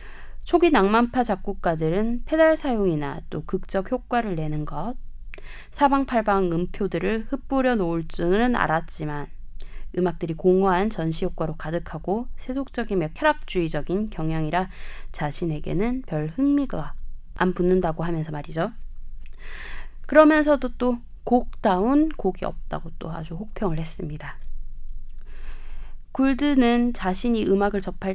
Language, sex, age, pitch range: Korean, female, 20-39, 165-235 Hz